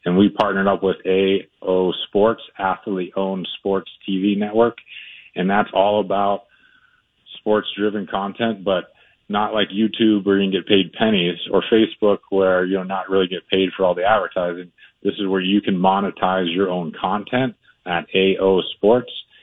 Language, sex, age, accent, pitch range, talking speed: English, male, 30-49, American, 95-105 Hz, 160 wpm